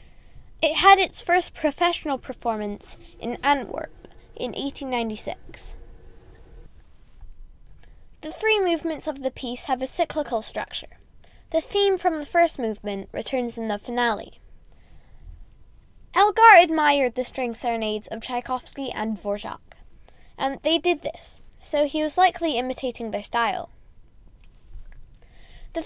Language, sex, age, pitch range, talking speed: English, female, 10-29, 230-320 Hz, 120 wpm